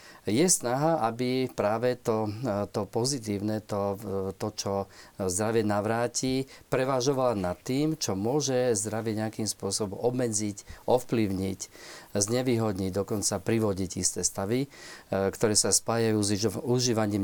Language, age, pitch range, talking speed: Slovak, 40-59, 100-135 Hz, 110 wpm